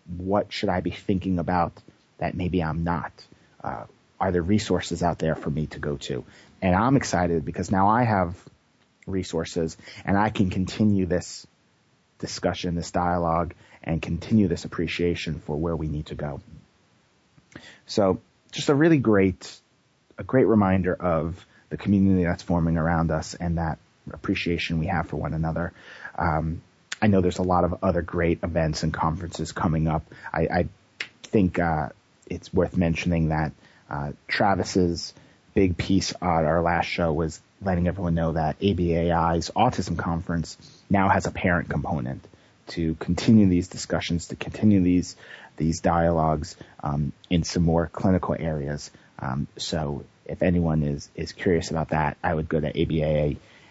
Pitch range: 80-95 Hz